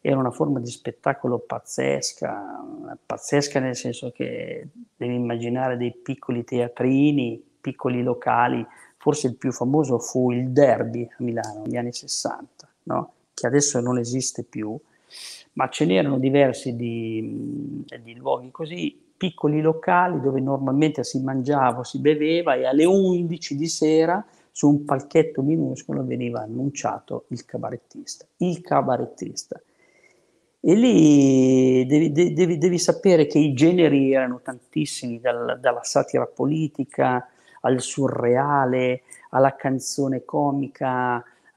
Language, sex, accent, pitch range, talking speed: Italian, male, native, 125-160 Hz, 125 wpm